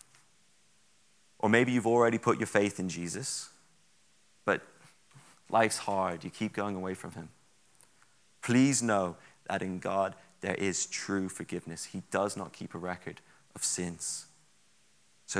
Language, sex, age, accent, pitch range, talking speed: English, male, 30-49, British, 90-110 Hz, 140 wpm